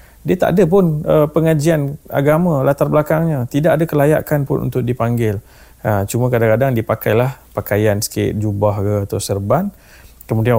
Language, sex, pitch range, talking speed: Malay, male, 105-135 Hz, 145 wpm